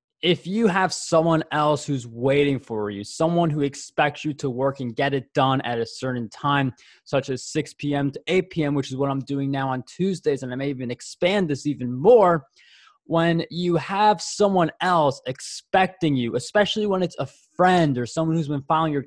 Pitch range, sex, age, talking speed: 135-165 Hz, male, 20-39, 200 wpm